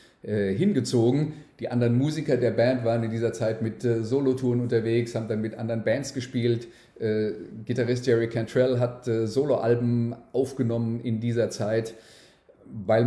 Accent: German